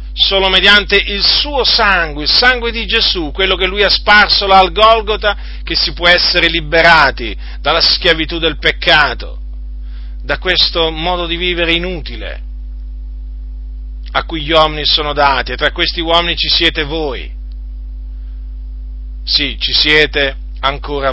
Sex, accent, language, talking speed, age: male, native, Italian, 135 wpm, 40-59